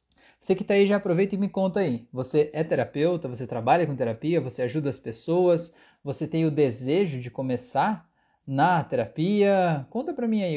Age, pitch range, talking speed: 20-39, 135-170 Hz, 185 wpm